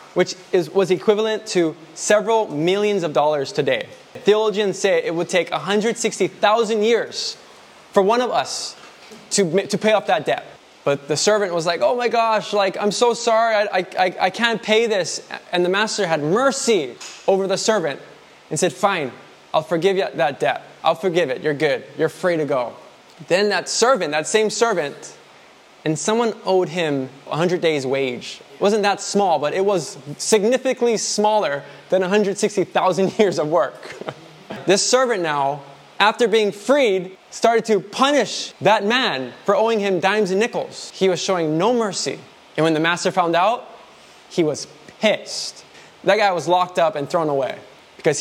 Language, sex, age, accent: English, male, 20-39, American